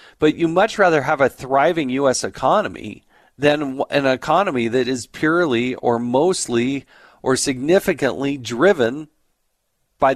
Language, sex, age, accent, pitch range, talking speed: English, male, 40-59, American, 110-145 Hz, 125 wpm